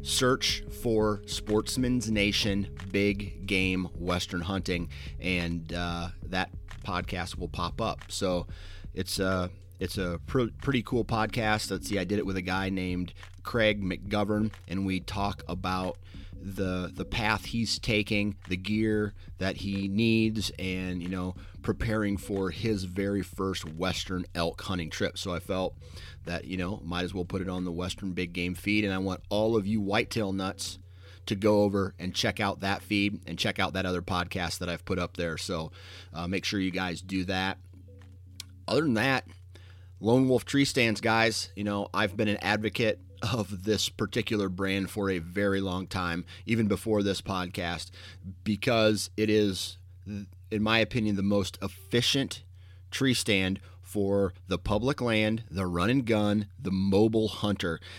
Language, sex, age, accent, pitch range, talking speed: English, male, 30-49, American, 90-105 Hz, 165 wpm